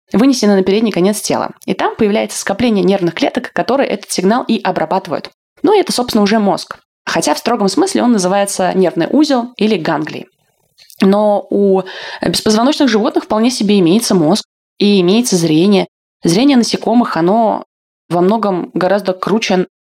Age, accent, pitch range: 20-39, native, 175-220 Hz